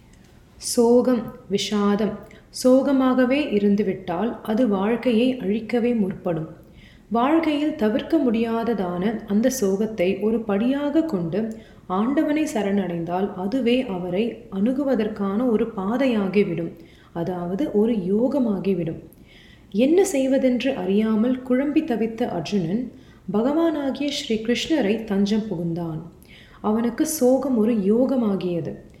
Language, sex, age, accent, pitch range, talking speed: Tamil, female, 30-49, native, 195-255 Hz, 85 wpm